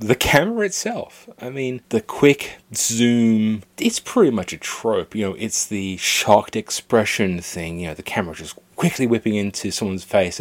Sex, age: male, 30-49